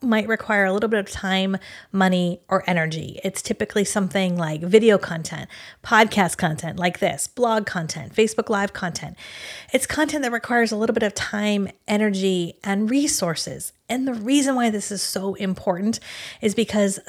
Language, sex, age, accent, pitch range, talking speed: English, female, 30-49, American, 180-225 Hz, 165 wpm